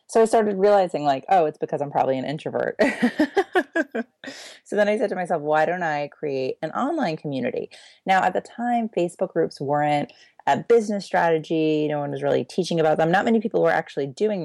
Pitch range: 150-200 Hz